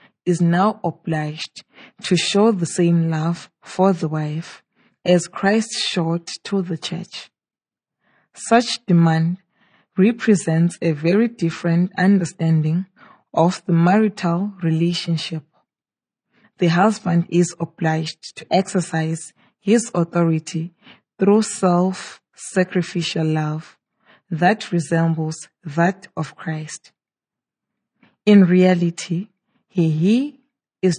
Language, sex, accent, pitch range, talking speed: English, female, Nigerian, 165-195 Hz, 95 wpm